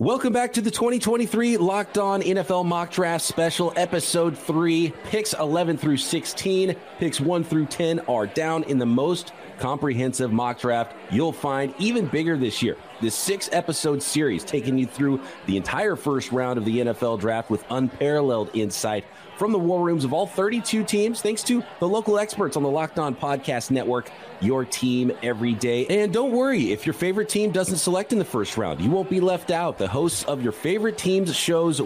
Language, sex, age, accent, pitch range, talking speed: English, male, 30-49, American, 130-185 Hz, 190 wpm